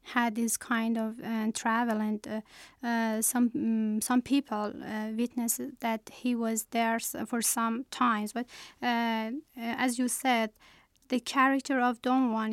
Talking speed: 150 wpm